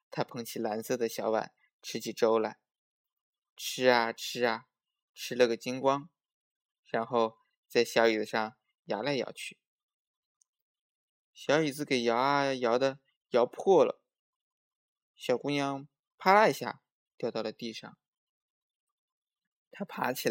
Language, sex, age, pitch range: Chinese, male, 20-39, 115-165 Hz